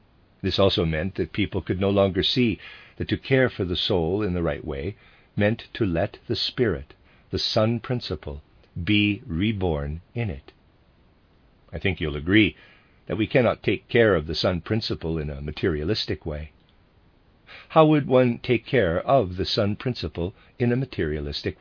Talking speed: 165 wpm